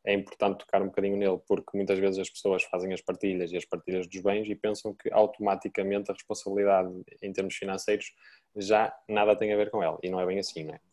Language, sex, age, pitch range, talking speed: Portuguese, male, 10-29, 100-115 Hz, 225 wpm